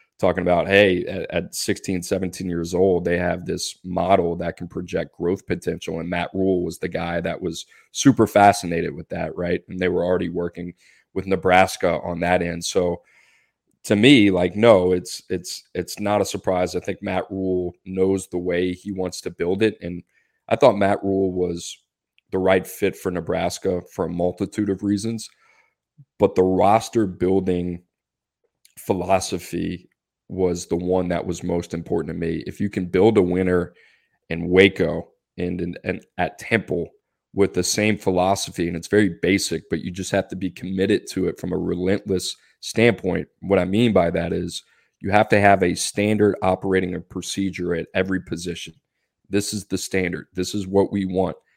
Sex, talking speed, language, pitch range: male, 180 wpm, English, 90-100 Hz